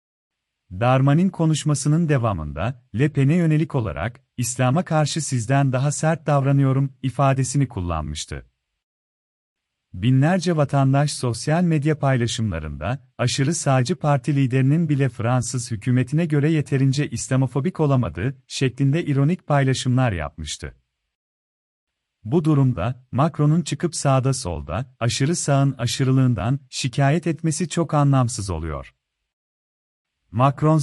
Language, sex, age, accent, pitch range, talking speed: Turkish, male, 40-59, native, 120-150 Hz, 95 wpm